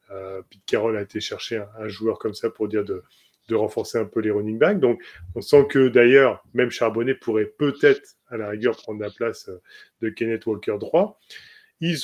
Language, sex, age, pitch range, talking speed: French, male, 20-39, 110-135 Hz, 205 wpm